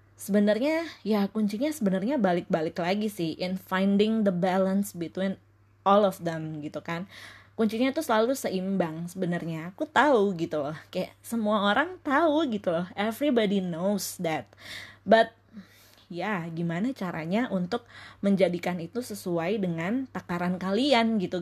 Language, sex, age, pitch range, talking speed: Indonesian, female, 20-39, 175-210 Hz, 130 wpm